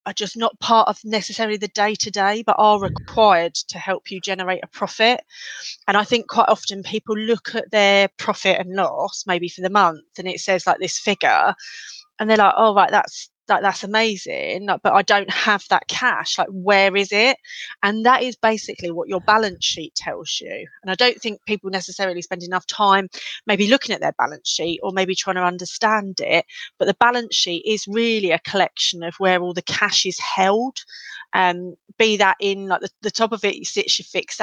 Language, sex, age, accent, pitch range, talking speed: English, female, 30-49, British, 185-220 Hz, 205 wpm